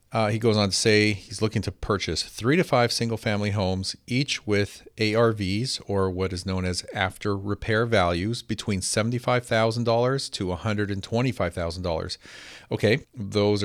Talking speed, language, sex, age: 135 wpm, English, male, 40-59